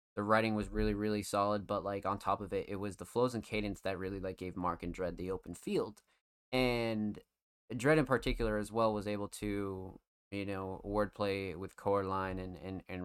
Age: 20-39